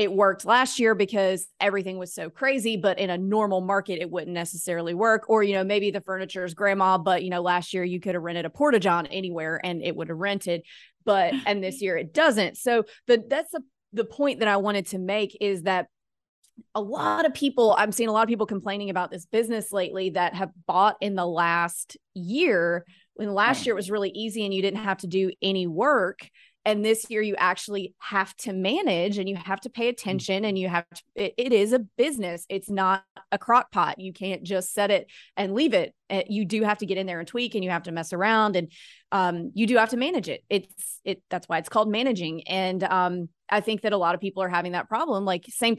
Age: 30-49